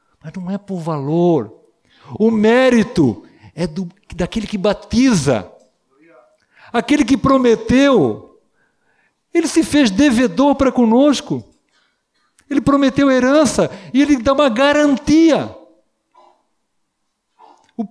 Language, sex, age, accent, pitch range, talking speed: Portuguese, male, 60-79, Brazilian, 195-255 Hz, 100 wpm